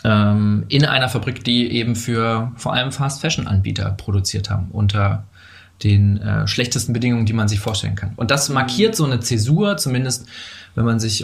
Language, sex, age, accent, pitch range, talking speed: German, male, 20-39, German, 105-125 Hz, 165 wpm